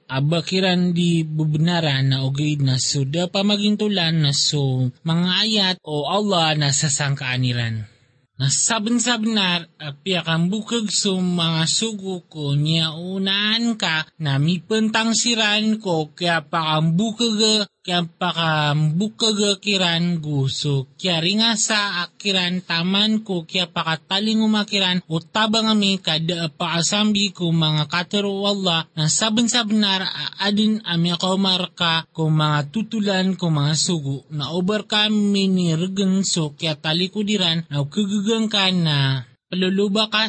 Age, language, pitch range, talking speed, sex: 20-39, Filipino, 160-205 Hz, 130 wpm, male